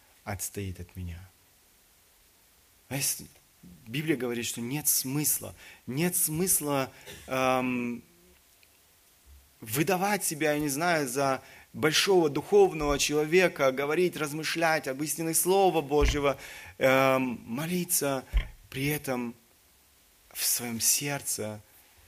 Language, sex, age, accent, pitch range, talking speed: Russian, male, 30-49, native, 95-135 Hz, 90 wpm